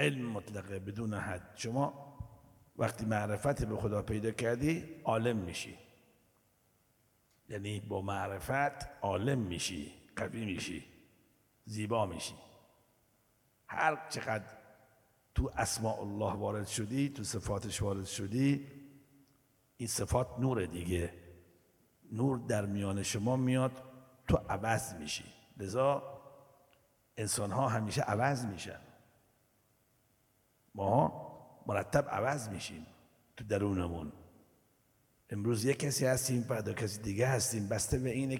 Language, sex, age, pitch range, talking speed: Arabic, male, 60-79, 105-135 Hz, 105 wpm